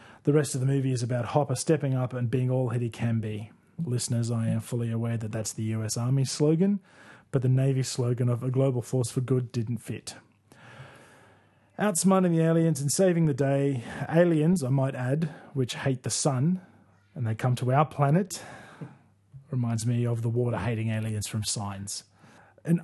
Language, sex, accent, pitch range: English, male, Australian, 115-150 Hz